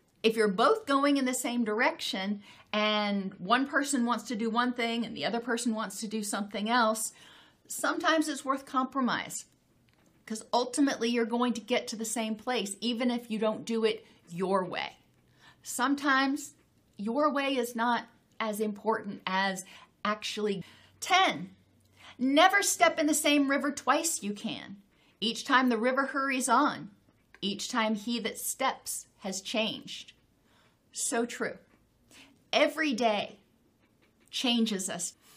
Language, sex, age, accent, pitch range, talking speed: English, female, 40-59, American, 210-255 Hz, 145 wpm